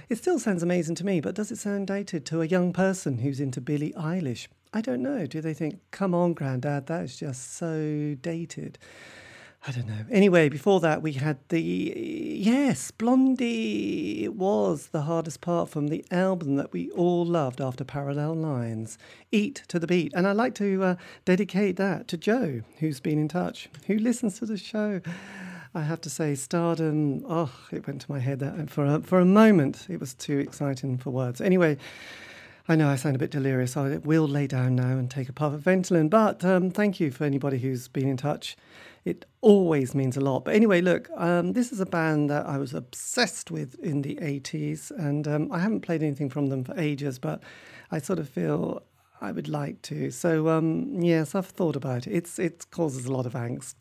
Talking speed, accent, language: 210 wpm, British, English